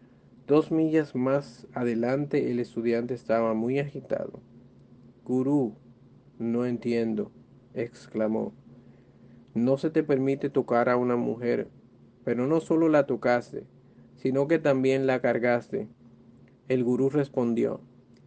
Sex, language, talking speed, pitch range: male, English, 110 wpm, 120-135 Hz